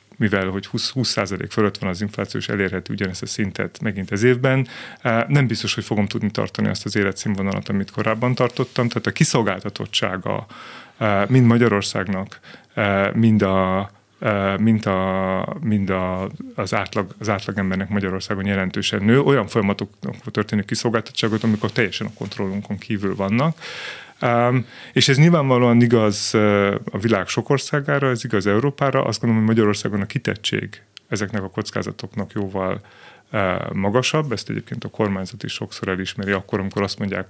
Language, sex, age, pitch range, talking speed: Hungarian, male, 30-49, 95-115 Hz, 145 wpm